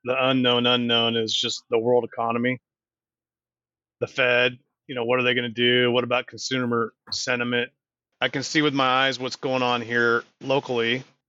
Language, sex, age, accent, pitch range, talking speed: English, male, 30-49, American, 115-130 Hz, 175 wpm